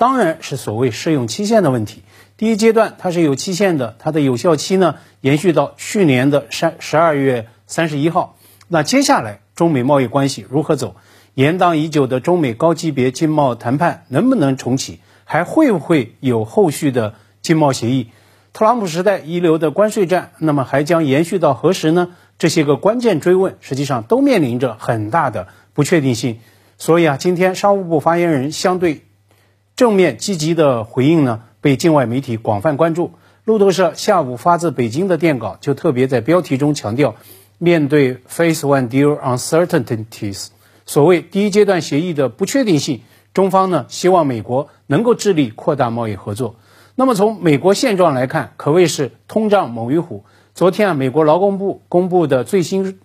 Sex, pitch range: male, 125-175 Hz